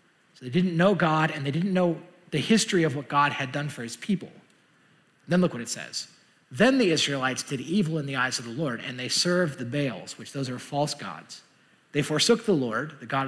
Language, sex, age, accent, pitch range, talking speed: English, male, 30-49, American, 125-170 Hz, 230 wpm